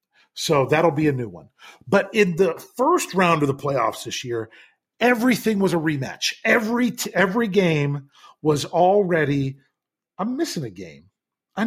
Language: English